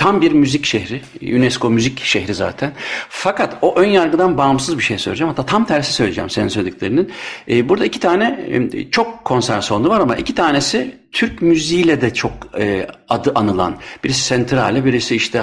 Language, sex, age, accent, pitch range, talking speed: Turkish, male, 60-79, native, 125-170 Hz, 165 wpm